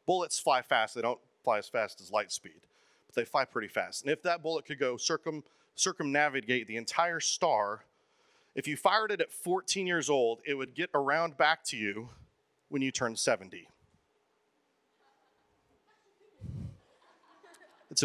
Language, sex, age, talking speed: English, male, 40-59, 155 wpm